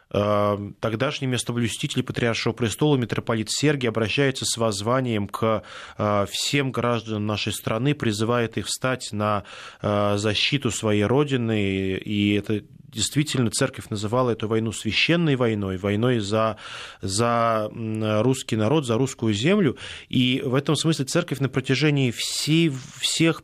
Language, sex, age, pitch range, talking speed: Russian, male, 20-39, 110-140 Hz, 120 wpm